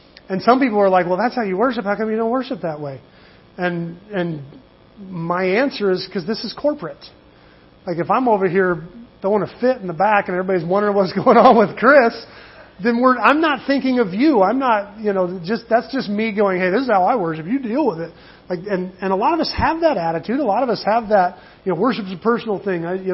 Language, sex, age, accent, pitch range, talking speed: English, male, 40-59, American, 165-210 Hz, 245 wpm